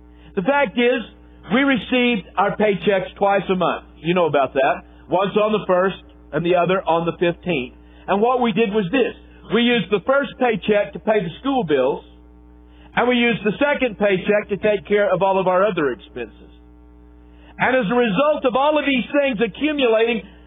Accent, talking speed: American, 190 wpm